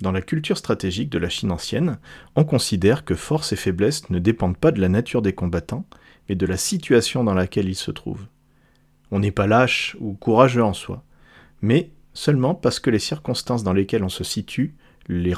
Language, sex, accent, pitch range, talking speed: French, male, French, 95-120 Hz, 200 wpm